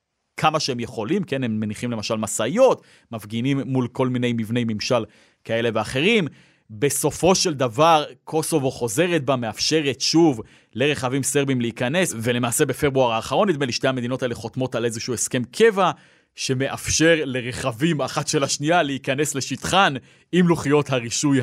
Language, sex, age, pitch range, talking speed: Hebrew, male, 30-49, 120-155 Hz, 140 wpm